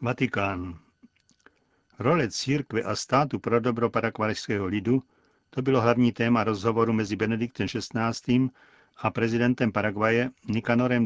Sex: male